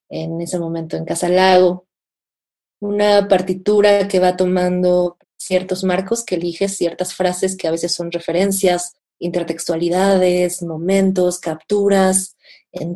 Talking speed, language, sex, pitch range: 115 wpm, Spanish, female, 170-190 Hz